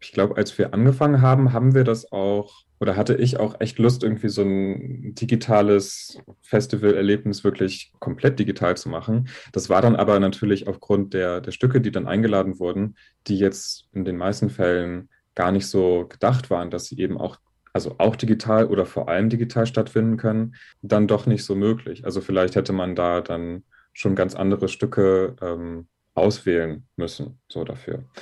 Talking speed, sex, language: 175 wpm, male, German